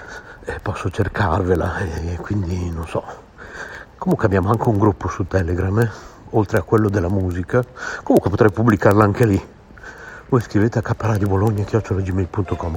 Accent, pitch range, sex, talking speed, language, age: native, 95-115 Hz, male, 135 wpm, Italian, 60-79